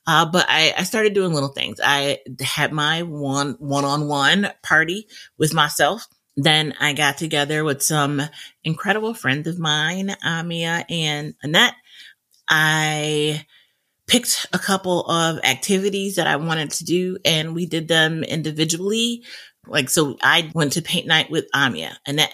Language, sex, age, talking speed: English, female, 30-49, 155 wpm